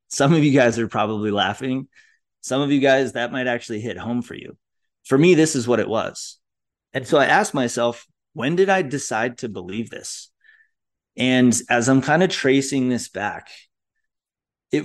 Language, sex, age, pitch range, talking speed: English, male, 30-49, 105-135 Hz, 185 wpm